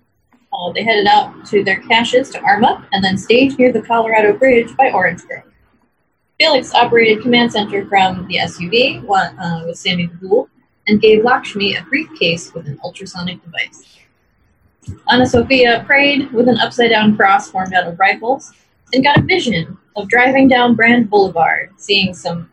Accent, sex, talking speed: American, female, 170 wpm